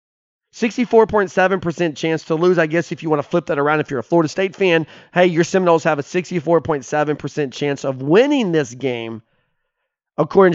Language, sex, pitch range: English, male, 160-230 Hz